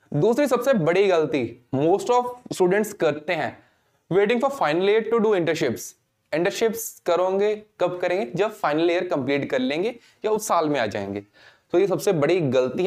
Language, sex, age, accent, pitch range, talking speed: Hindi, male, 20-39, native, 140-195 Hz, 150 wpm